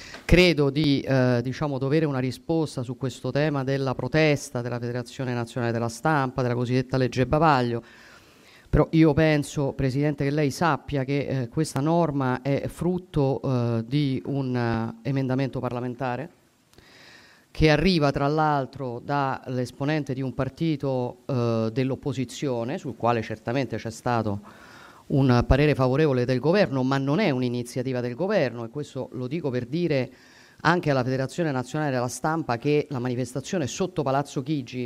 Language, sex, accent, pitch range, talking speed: Italian, female, native, 125-150 Hz, 140 wpm